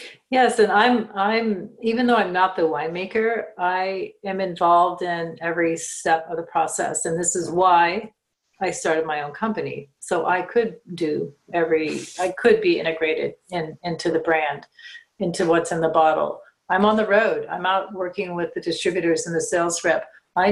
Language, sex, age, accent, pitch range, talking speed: English, female, 40-59, American, 165-210 Hz, 180 wpm